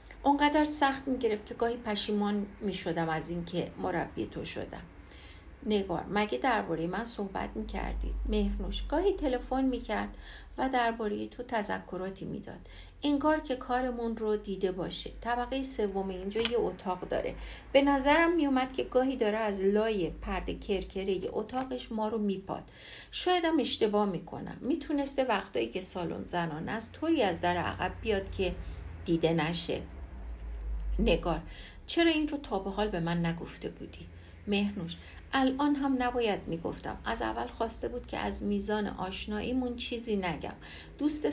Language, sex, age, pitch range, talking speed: Persian, female, 60-79, 180-255 Hz, 145 wpm